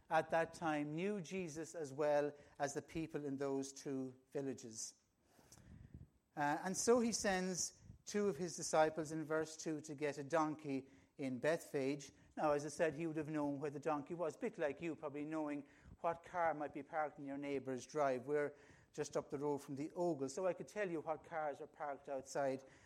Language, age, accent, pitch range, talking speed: English, 60-79, British, 145-185 Hz, 200 wpm